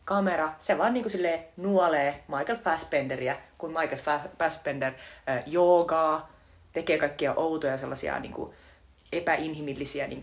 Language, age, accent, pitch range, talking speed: Finnish, 30-49, native, 140-190 Hz, 115 wpm